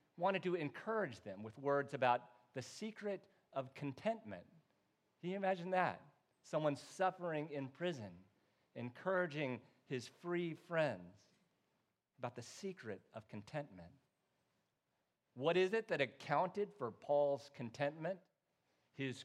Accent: American